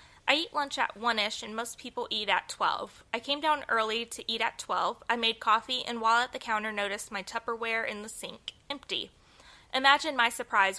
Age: 20-39